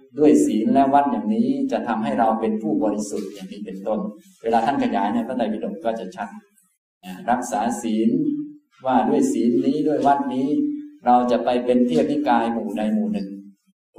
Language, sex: Thai, male